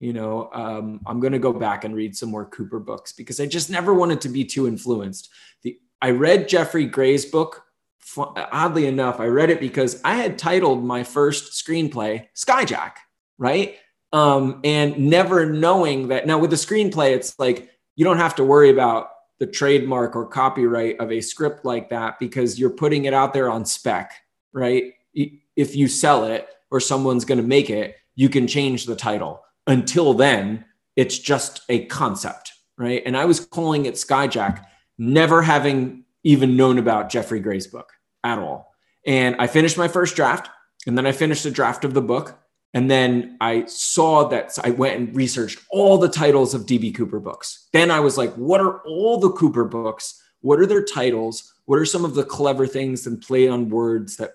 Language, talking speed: English, 190 wpm